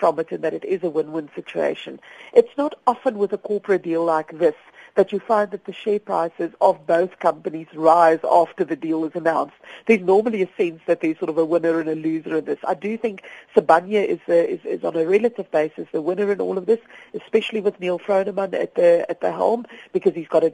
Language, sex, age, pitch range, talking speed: English, female, 50-69, 165-215 Hz, 235 wpm